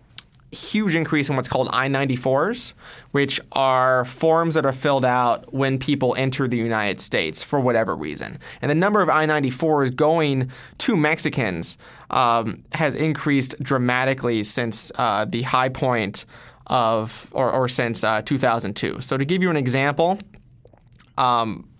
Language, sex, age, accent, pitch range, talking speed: English, male, 20-39, American, 125-150 Hz, 145 wpm